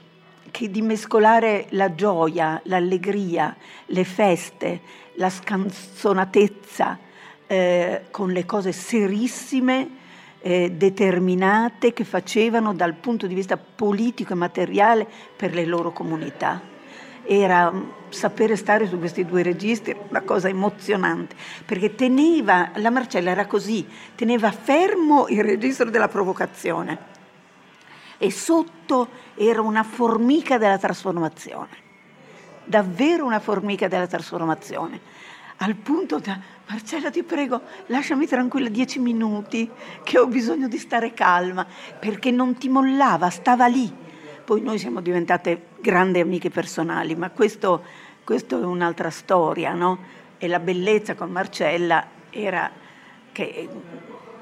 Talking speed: 120 wpm